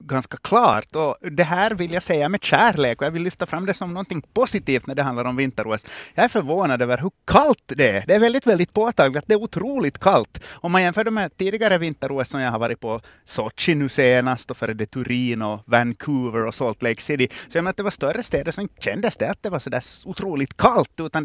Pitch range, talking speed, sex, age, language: 125-180 Hz, 235 wpm, male, 30-49, Swedish